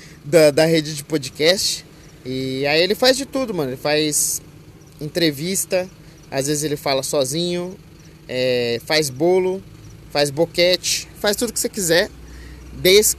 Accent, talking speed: Brazilian, 140 wpm